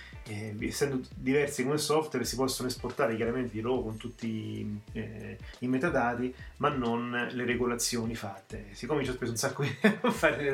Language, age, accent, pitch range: Italian, 30-49, native, 115-135 Hz